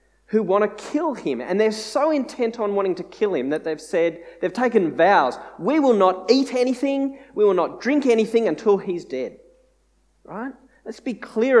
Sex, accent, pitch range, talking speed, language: male, Australian, 170-250 Hz, 190 wpm, English